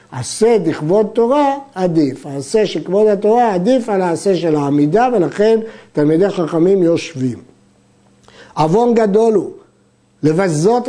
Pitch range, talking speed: 165-220 Hz, 115 wpm